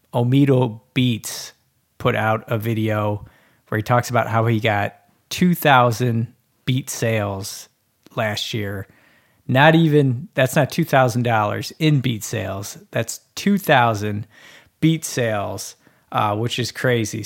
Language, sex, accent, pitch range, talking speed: English, male, American, 110-135 Hz, 130 wpm